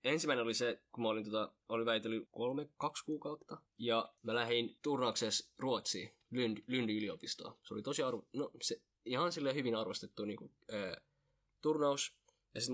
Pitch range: 110-125 Hz